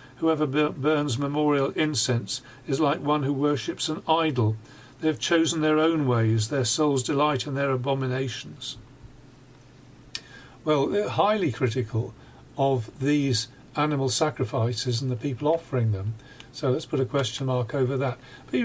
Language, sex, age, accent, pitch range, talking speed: English, male, 50-69, British, 125-145 Hz, 145 wpm